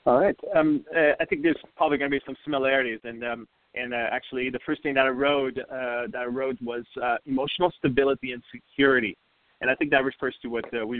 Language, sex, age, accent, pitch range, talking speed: English, male, 30-49, American, 120-145 Hz, 235 wpm